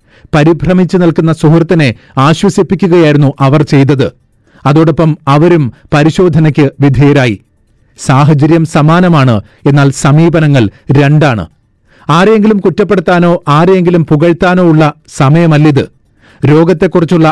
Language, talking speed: Malayalam, 75 wpm